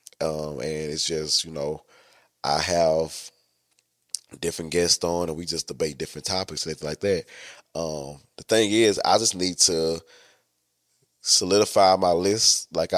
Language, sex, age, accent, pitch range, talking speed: English, male, 20-39, American, 80-90 Hz, 150 wpm